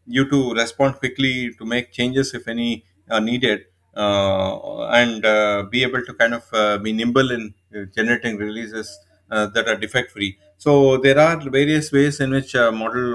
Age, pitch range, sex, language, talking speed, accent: 30-49, 105-125 Hz, male, English, 180 wpm, Indian